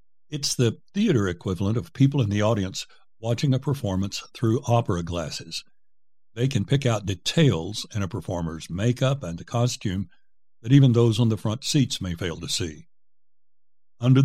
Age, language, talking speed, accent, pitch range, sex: 60-79, English, 160 wpm, American, 95-120 Hz, male